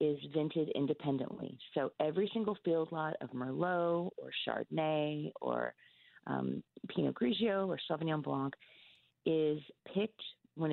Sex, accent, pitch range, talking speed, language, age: female, American, 140-185 Hz, 125 wpm, English, 40-59